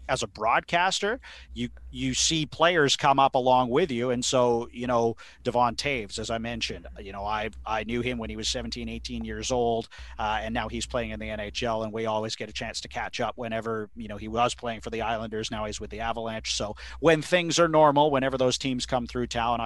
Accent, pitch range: American, 110-130 Hz